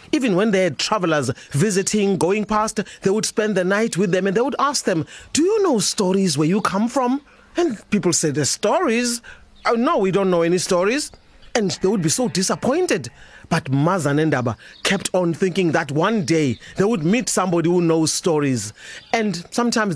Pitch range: 170-230 Hz